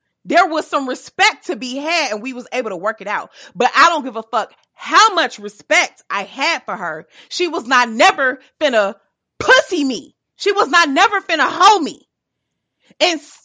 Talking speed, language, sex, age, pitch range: 190 wpm, English, female, 30-49, 185-290 Hz